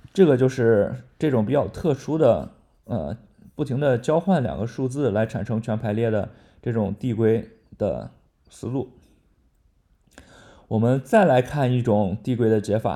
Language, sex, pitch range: Chinese, male, 110-140 Hz